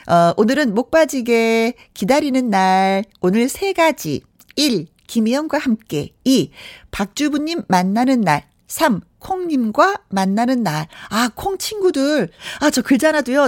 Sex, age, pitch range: female, 40-59, 185-290 Hz